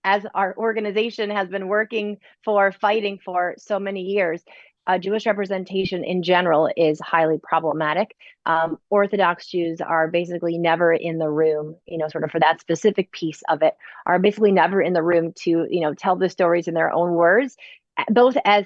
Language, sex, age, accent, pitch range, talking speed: English, female, 30-49, American, 170-205 Hz, 185 wpm